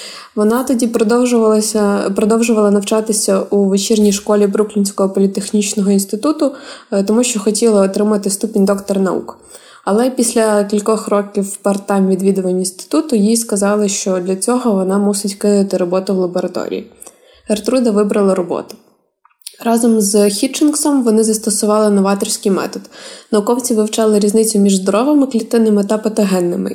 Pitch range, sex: 200-225 Hz, female